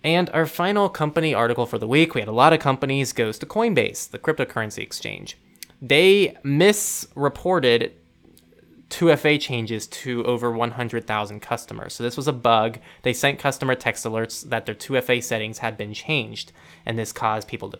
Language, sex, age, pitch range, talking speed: English, male, 20-39, 115-160 Hz, 170 wpm